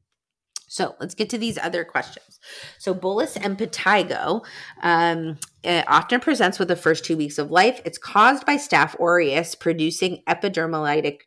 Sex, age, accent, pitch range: female, 30-49, American, 160-195 Hz